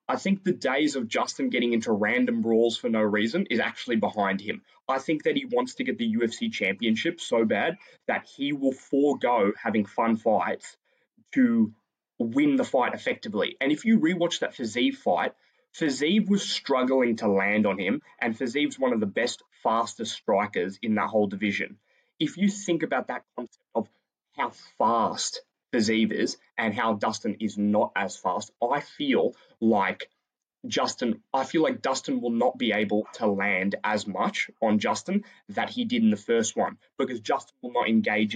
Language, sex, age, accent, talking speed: English, male, 20-39, Australian, 180 wpm